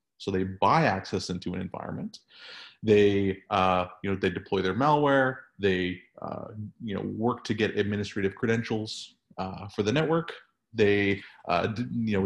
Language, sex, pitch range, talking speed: English, male, 100-140 Hz, 155 wpm